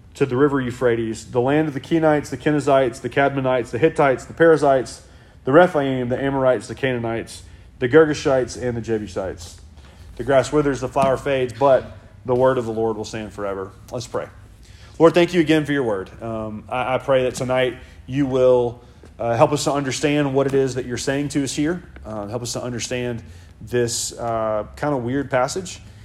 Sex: male